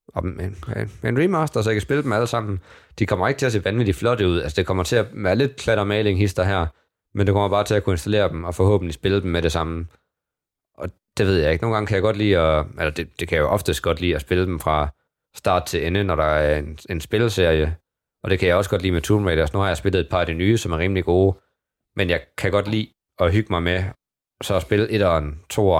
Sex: male